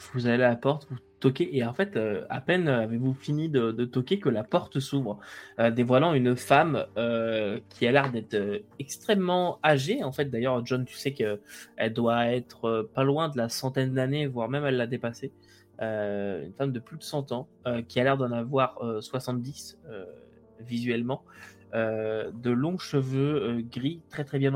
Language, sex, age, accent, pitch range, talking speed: French, male, 20-39, French, 115-140 Hz, 195 wpm